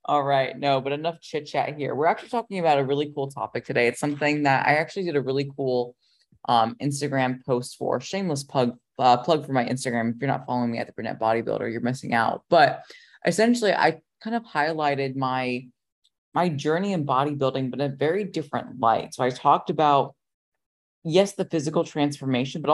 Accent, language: American, English